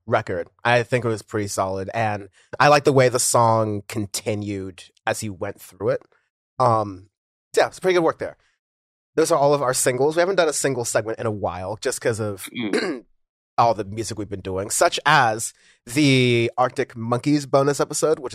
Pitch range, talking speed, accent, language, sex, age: 105-130 Hz, 190 wpm, American, English, male, 30-49